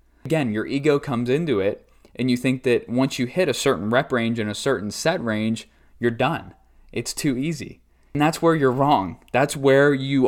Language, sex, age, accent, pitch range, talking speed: English, male, 20-39, American, 110-135 Hz, 205 wpm